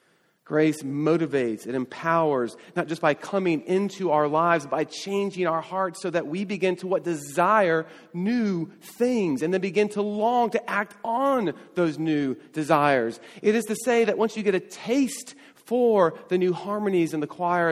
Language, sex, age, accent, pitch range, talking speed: English, male, 40-59, American, 140-190 Hz, 175 wpm